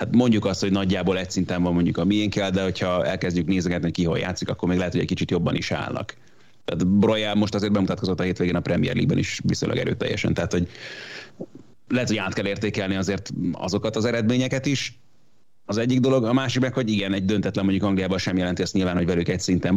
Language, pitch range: Hungarian, 95-110 Hz